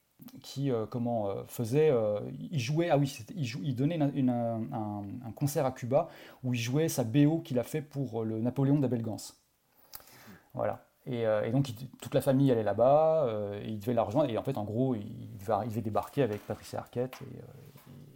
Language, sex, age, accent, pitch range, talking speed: French, male, 30-49, French, 115-140 Hz, 210 wpm